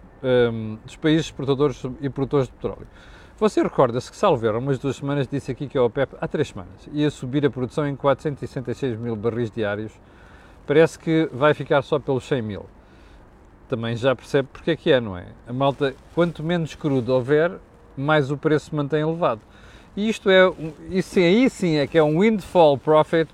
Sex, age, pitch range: male, 40-59, 130-160 Hz